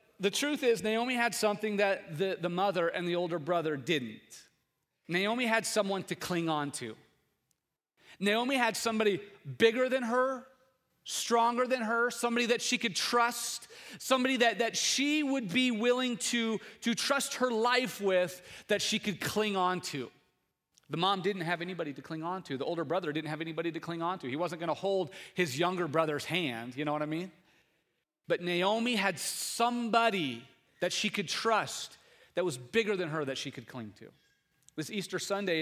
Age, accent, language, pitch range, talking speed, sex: 30-49, American, English, 175-240 Hz, 185 wpm, male